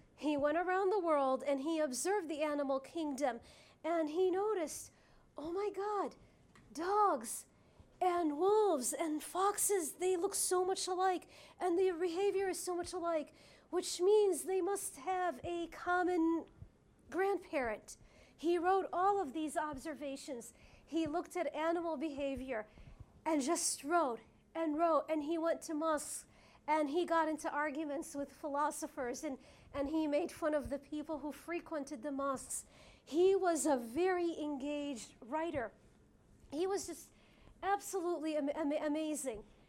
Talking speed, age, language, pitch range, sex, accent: 145 wpm, 40-59, English, 290-350 Hz, female, American